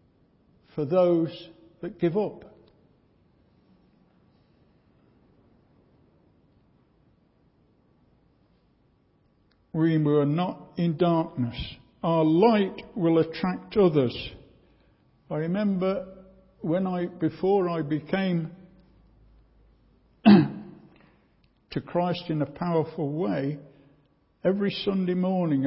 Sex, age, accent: male, 60-79, British